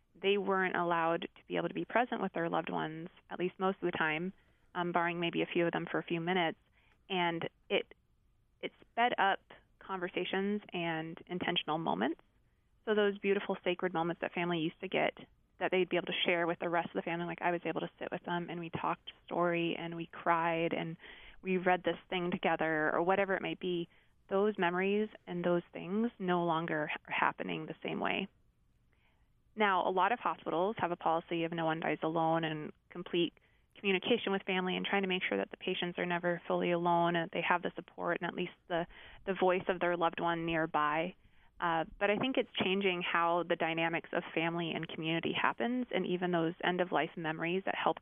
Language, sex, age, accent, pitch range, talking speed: English, female, 20-39, American, 165-185 Hz, 210 wpm